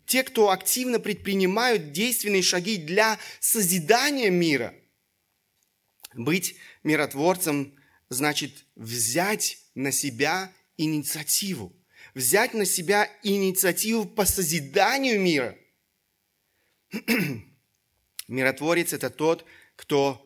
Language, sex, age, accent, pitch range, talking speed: Russian, male, 30-49, native, 145-205 Hz, 80 wpm